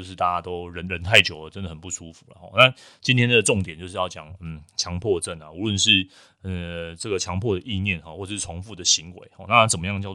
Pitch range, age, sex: 85-100 Hz, 20-39, male